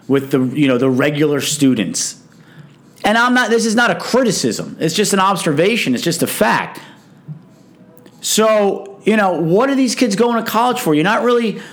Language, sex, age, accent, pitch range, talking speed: English, male, 40-59, American, 150-210 Hz, 190 wpm